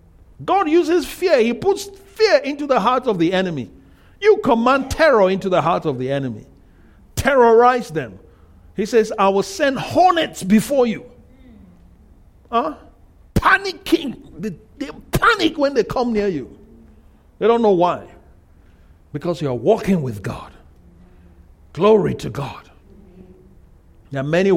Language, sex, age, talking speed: English, male, 50-69, 140 wpm